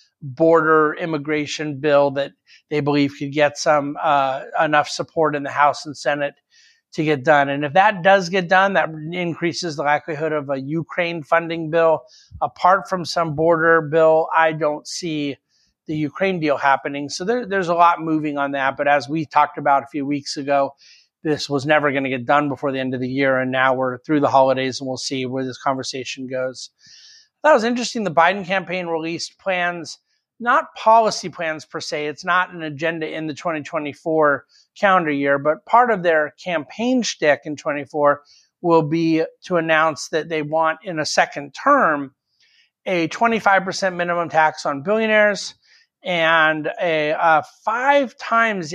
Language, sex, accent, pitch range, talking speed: English, male, American, 145-175 Hz, 175 wpm